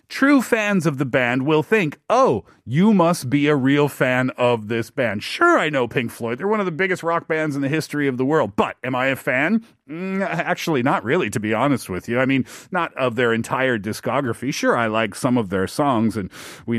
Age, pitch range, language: 40-59, 120-180 Hz, Korean